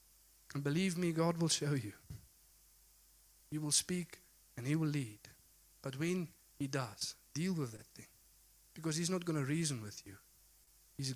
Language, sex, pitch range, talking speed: English, male, 130-170 Hz, 165 wpm